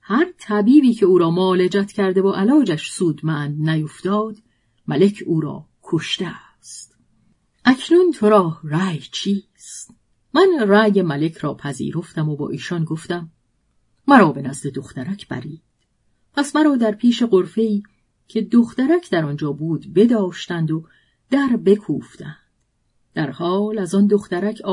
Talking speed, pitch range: 130 wpm, 160-210 Hz